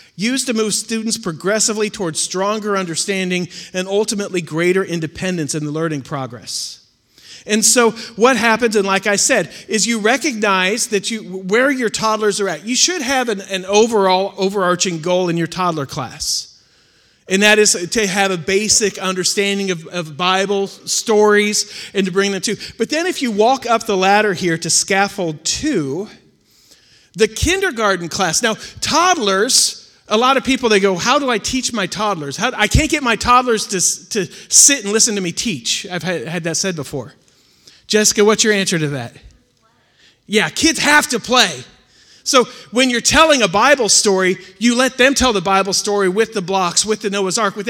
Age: 40-59